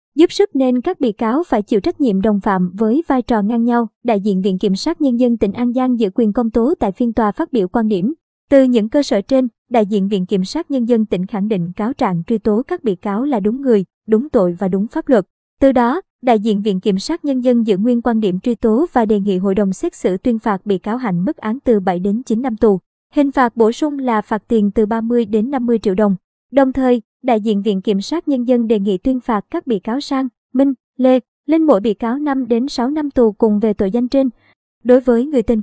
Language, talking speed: Vietnamese, 255 wpm